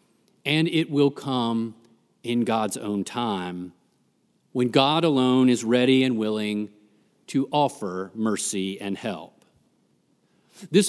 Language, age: English, 40-59